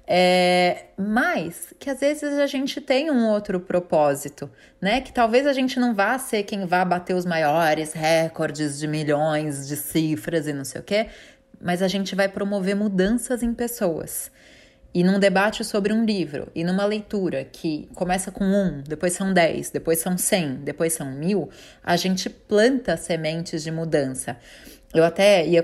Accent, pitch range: Brazilian, 150-200 Hz